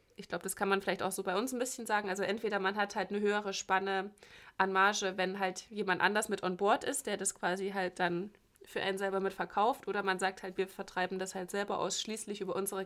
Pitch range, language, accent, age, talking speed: 185-205 Hz, German, German, 20-39, 245 wpm